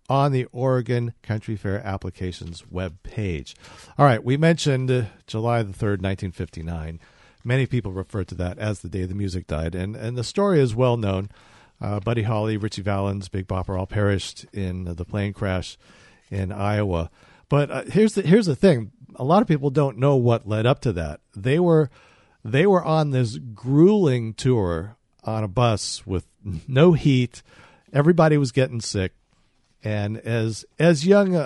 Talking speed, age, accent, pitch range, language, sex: 170 wpm, 50-69, American, 100-135 Hz, English, male